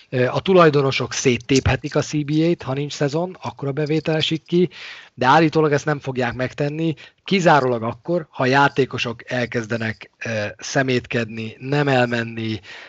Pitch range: 120-150 Hz